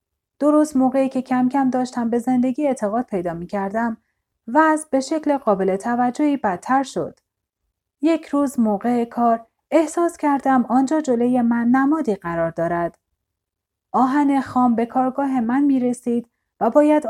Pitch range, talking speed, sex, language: 210-265 Hz, 145 wpm, female, Persian